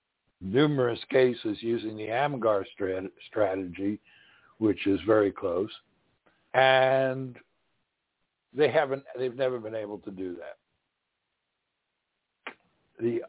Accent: American